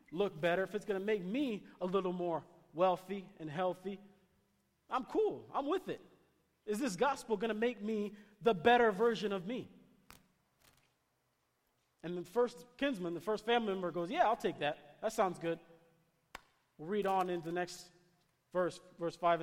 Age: 40-59